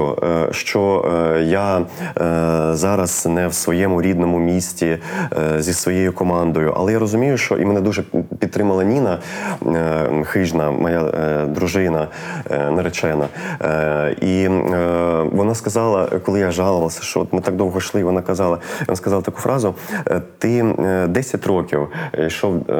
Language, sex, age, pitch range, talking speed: Ukrainian, male, 30-49, 80-100 Hz, 120 wpm